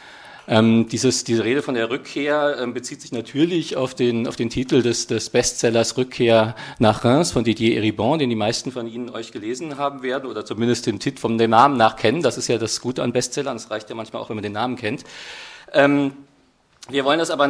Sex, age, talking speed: male, 40-59, 220 wpm